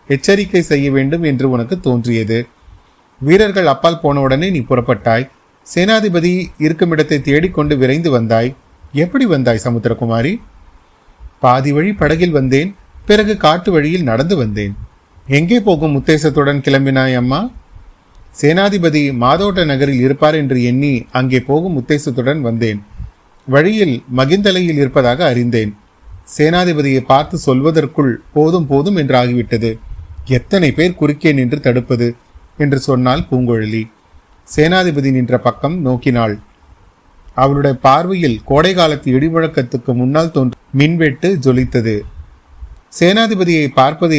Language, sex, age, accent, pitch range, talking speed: Tamil, male, 30-49, native, 120-160 Hz, 105 wpm